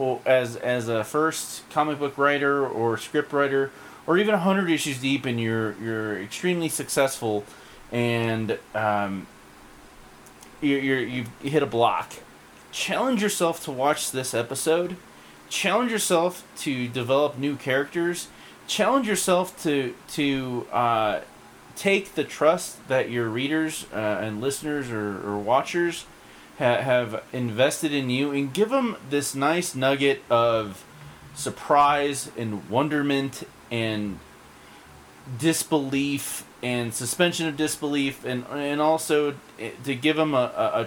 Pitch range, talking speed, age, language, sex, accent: 115-155 Hz, 125 wpm, 30-49, English, male, American